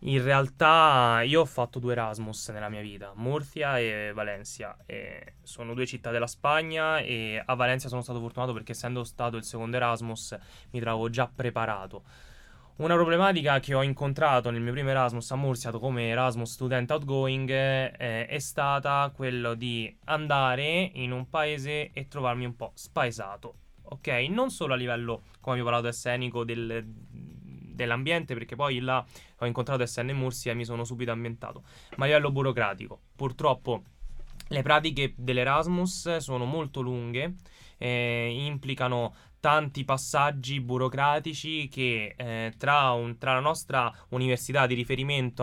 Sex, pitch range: male, 120-140 Hz